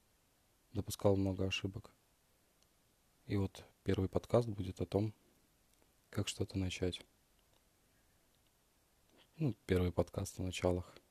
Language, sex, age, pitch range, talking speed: Russian, male, 20-39, 90-105 Hz, 95 wpm